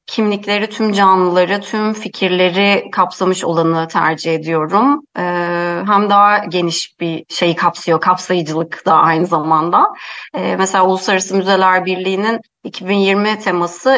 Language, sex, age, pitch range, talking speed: Turkish, female, 30-49, 170-205 Hz, 105 wpm